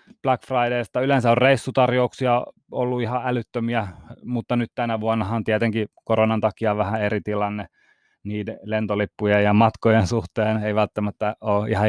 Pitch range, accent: 105-130 Hz, native